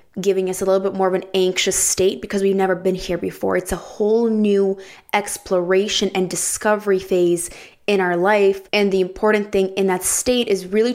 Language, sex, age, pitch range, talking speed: English, female, 20-39, 180-200 Hz, 195 wpm